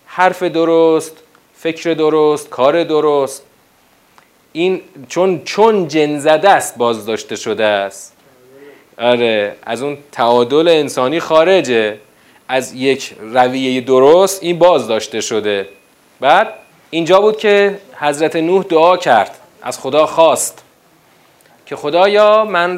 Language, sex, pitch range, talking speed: Persian, male, 120-165 Hz, 110 wpm